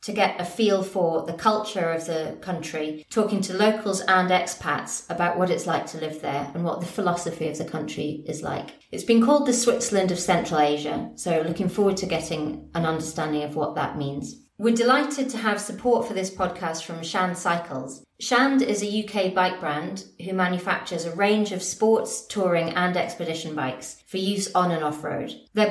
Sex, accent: female, British